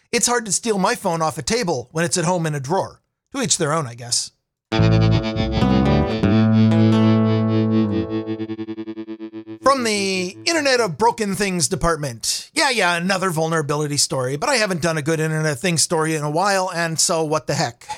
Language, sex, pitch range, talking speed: English, male, 145-195 Hz, 175 wpm